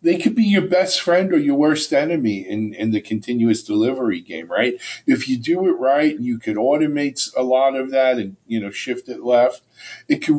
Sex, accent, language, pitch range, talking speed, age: male, American, English, 115-185 Hz, 220 wpm, 50-69